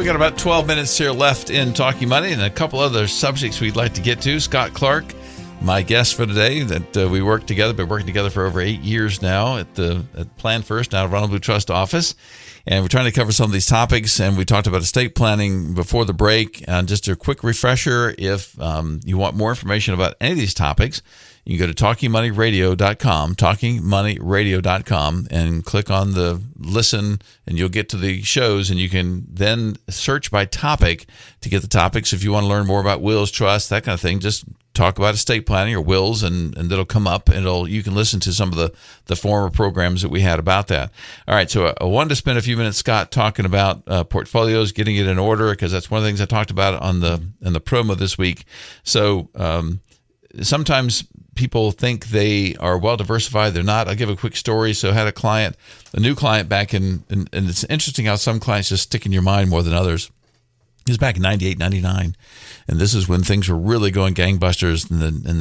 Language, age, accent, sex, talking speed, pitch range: English, 50-69, American, male, 225 wpm, 95-115 Hz